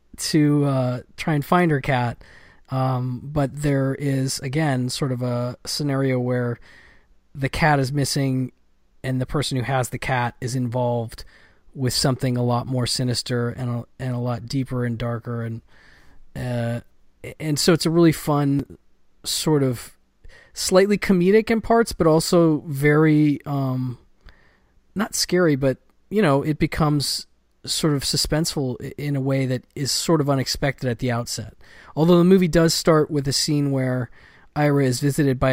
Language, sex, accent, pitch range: English, male, American, 125-145 Hz